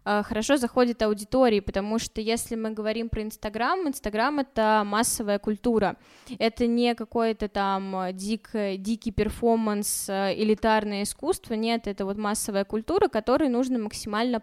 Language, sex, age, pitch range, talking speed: Russian, female, 20-39, 205-240 Hz, 130 wpm